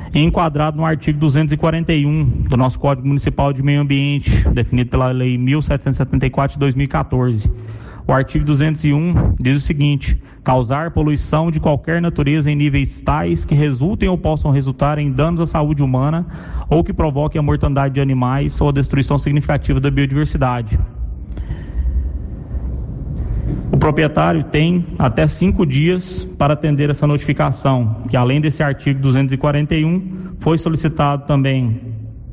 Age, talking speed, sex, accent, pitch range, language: 30-49, 135 wpm, male, Brazilian, 135-155 Hz, Portuguese